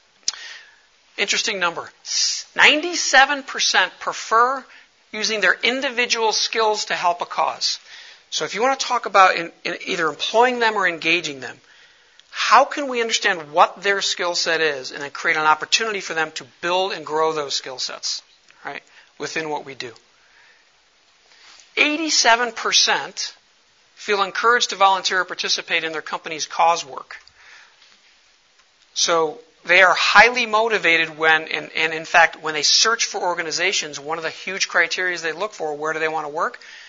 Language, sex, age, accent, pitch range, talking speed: English, male, 60-79, American, 160-220 Hz, 150 wpm